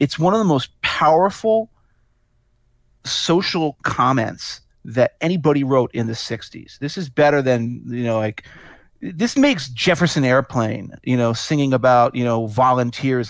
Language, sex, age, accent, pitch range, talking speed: English, male, 40-59, American, 120-155 Hz, 145 wpm